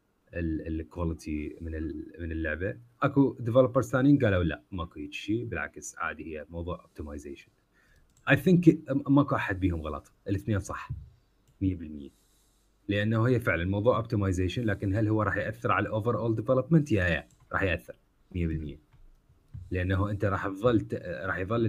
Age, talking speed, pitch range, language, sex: 30-49, 140 wpm, 90-120 Hz, Arabic, male